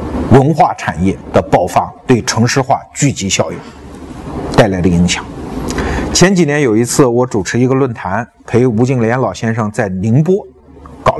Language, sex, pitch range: Chinese, male, 115-170 Hz